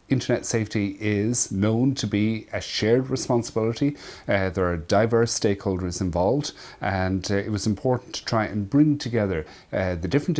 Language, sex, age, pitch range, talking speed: English, male, 40-59, 95-115 Hz, 160 wpm